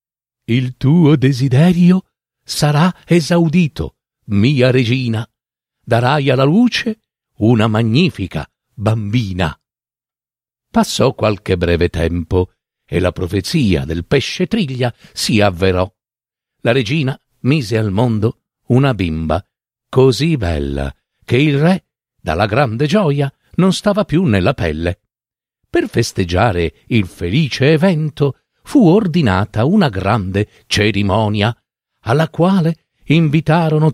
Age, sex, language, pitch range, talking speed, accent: 50-69, male, Italian, 100-160 Hz, 105 wpm, native